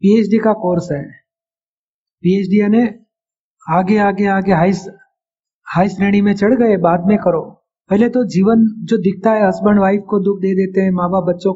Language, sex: Hindi, male